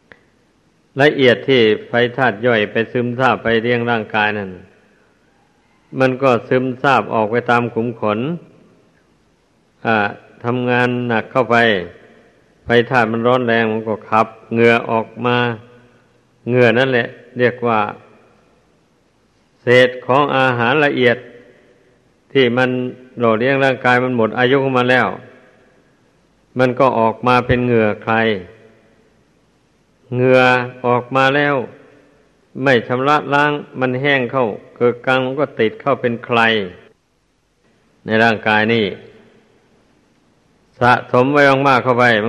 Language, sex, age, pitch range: Thai, male, 60-79, 115-125 Hz